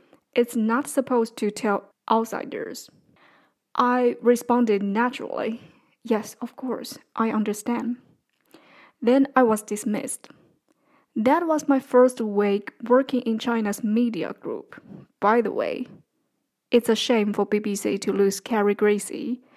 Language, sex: English, female